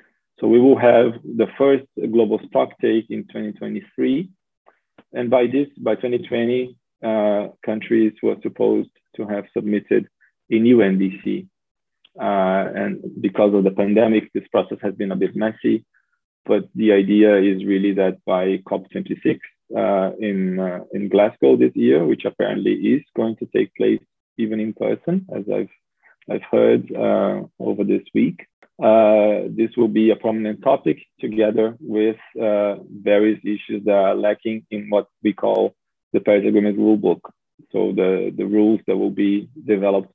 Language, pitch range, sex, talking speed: English, 100-120 Hz, male, 155 wpm